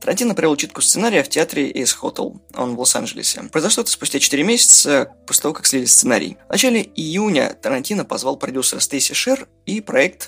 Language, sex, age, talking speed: Russian, male, 20-39, 180 wpm